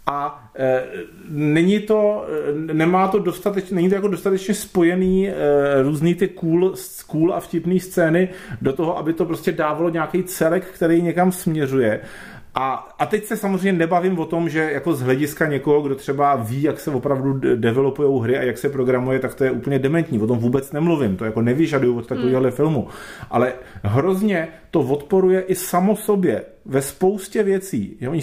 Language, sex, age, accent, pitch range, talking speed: Czech, male, 40-59, native, 130-165 Hz, 175 wpm